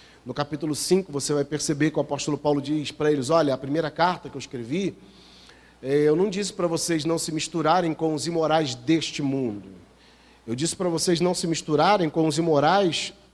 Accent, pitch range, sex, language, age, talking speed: Brazilian, 145-175 Hz, male, Portuguese, 40-59, 195 wpm